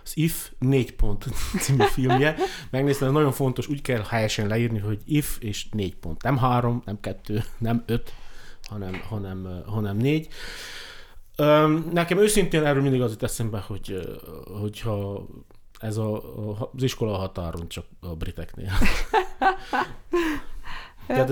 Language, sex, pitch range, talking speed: Hungarian, male, 105-135 Hz, 140 wpm